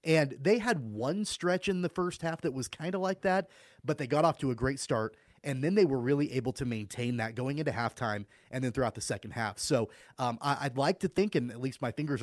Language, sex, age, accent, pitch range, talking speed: English, male, 30-49, American, 120-150 Hz, 260 wpm